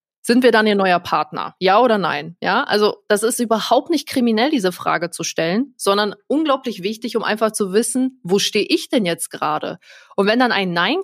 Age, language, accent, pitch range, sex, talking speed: 20-39, German, German, 195-235 Hz, female, 205 wpm